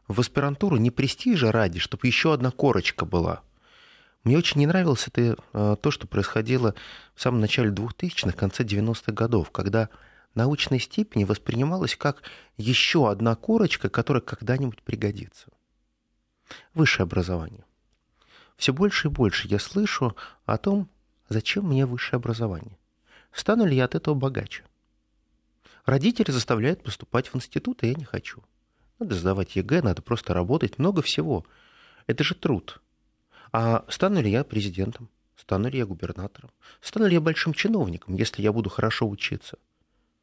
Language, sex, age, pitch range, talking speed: Russian, male, 30-49, 105-145 Hz, 140 wpm